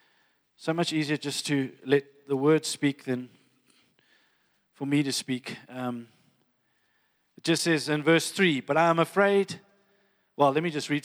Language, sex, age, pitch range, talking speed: English, male, 40-59, 155-195 Hz, 165 wpm